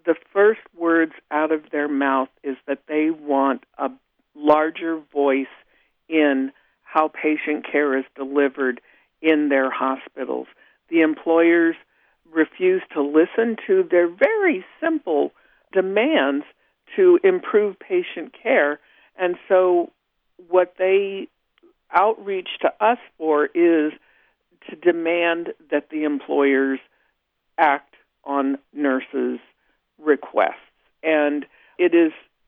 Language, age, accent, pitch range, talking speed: English, 60-79, American, 145-185 Hz, 105 wpm